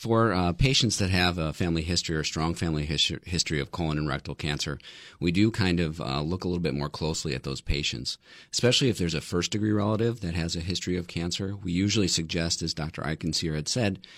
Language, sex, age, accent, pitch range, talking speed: English, male, 40-59, American, 75-90 Hz, 220 wpm